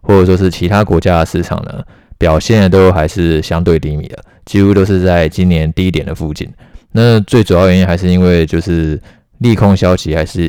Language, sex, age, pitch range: Chinese, male, 20-39, 80-95 Hz